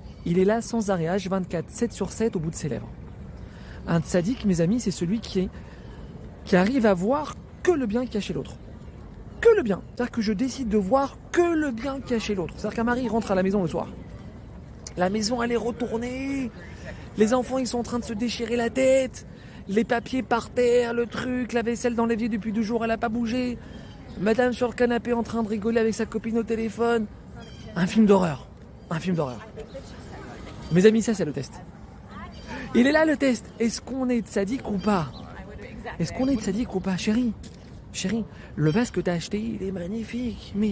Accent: French